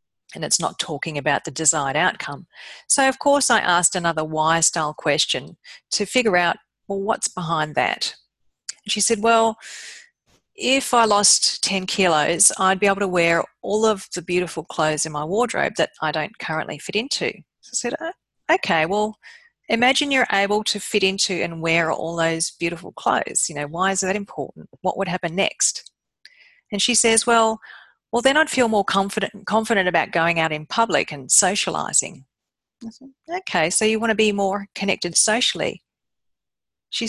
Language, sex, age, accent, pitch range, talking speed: English, female, 40-59, Australian, 170-230 Hz, 170 wpm